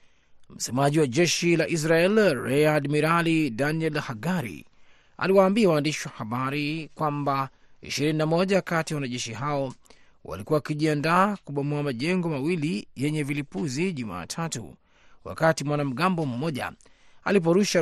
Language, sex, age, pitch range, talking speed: Swahili, male, 30-49, 130-175 Hz, 105 wpm